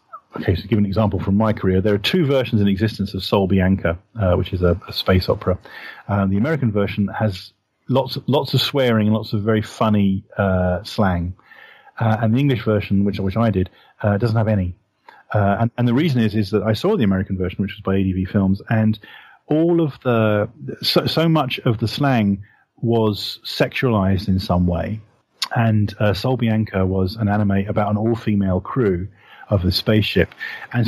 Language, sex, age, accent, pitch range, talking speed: English, male, 40-59, British, 100-115 Hz, 200 wpm